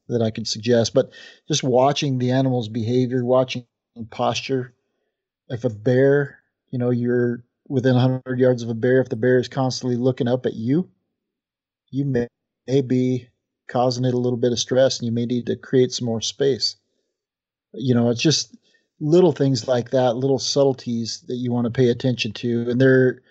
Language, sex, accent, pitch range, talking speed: English, male, American, 120-135 Hz, 185 wpm